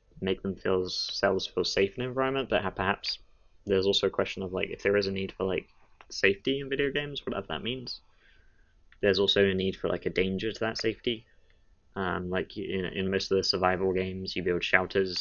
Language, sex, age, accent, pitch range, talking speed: English, male, 20-39, British, 90-100 Hz, 215 wpm